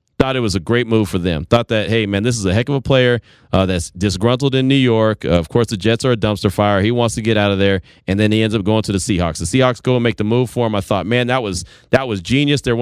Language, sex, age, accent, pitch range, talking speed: English, male, 30-49, American, 105-130 Hz, 320 wpm